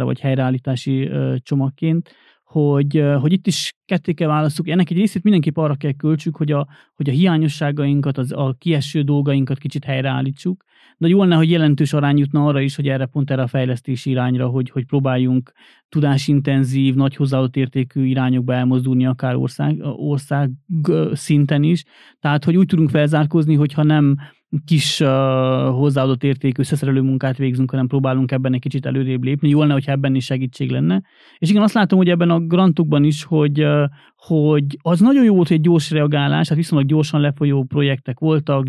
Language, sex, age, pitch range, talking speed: Hungarian, male, 30-49, 140-165 Hz, 170 wpm